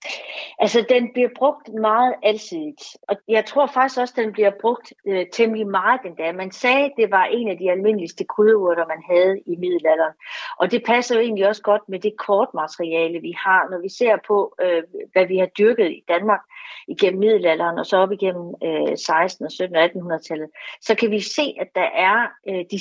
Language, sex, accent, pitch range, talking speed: Danish, female, native, 180-230 Hz, 210 wpm